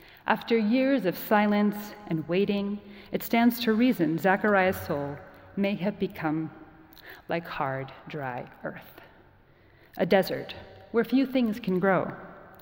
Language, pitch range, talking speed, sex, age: English, 170-225 Hz, 125 wpm, female, 30-49